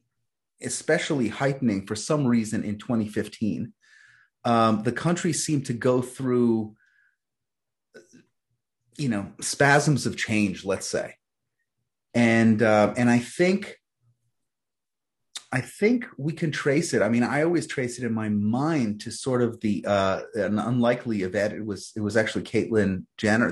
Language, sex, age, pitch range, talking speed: English, male, 30-49, 105-130 Hz, 145 wpm